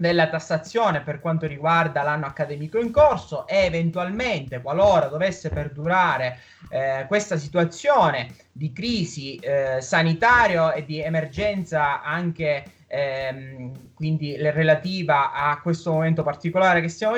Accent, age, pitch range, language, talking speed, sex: native, 20-39, 150-190 Hz, Italian, 120 wpm, male